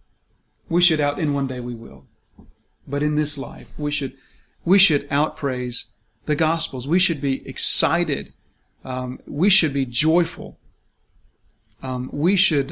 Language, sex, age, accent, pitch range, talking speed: English, male, 40-59, American, 130-160 Hz, 150 wpm